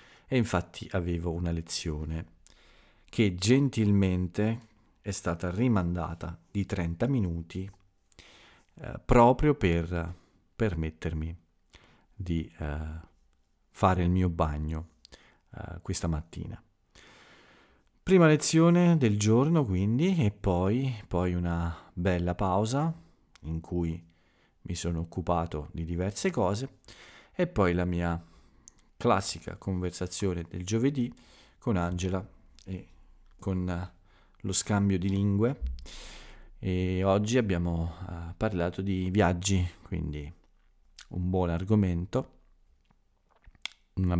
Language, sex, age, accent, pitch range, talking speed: Italian, male, 40-59, native, 85-100 Hz, 95 wpm